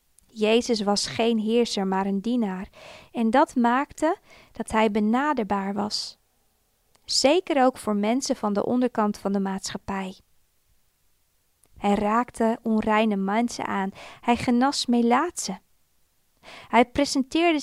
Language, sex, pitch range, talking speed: Dutch, female, 200-245 Hz, 115 wpm